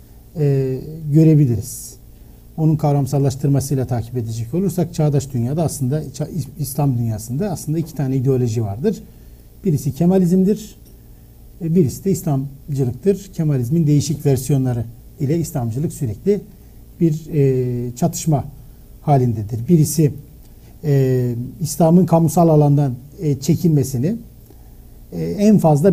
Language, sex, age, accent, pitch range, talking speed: Turkish, male, 60-79, native, 125-165 Hz, 85 wpm